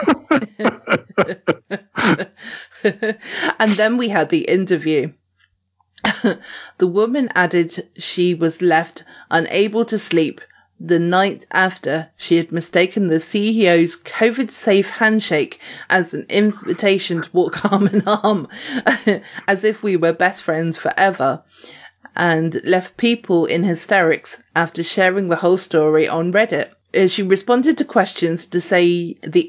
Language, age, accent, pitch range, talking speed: English, 20-39, British, 165-215 Hz, 120 wpm